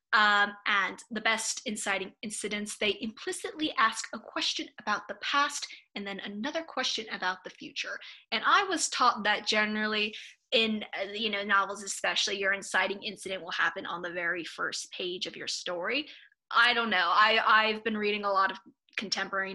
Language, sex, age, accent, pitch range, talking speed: English, female, 10-29, American, 205-280 Hz, 170 wpm